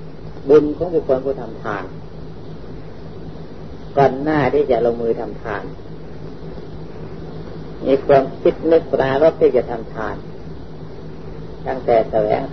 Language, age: Thai, 30-49